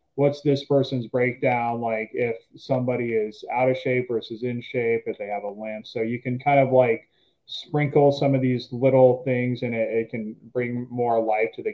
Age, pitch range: 20-39, 115-130 Hz